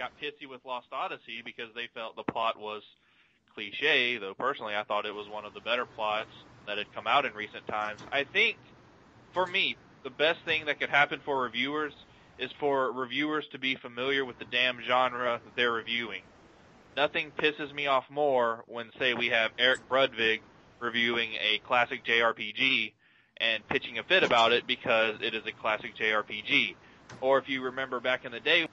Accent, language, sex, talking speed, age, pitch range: American, English, male, 185 wpm, 20-39, 120-150 Hz